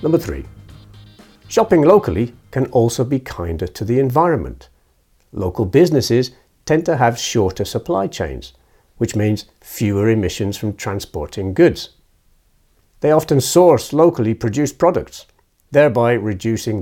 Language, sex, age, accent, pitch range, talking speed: English, male, 60-79, British, 90-120 Hz, 120 wpm